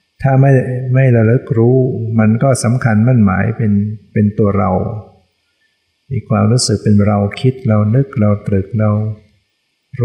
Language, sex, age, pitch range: Thai, male, 60-79, 100-120 Hz